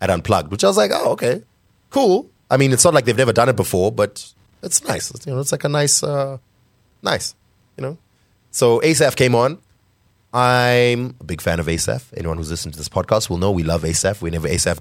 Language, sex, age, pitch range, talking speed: English, male, 30-49, 95-120 Hz, 225 wpm